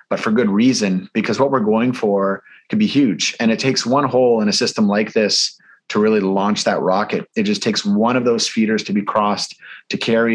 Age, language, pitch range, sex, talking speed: 30-49, English, 105-170 Hz, male, 225 wpm